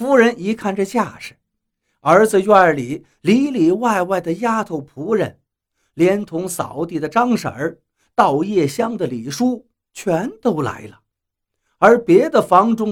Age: 50-69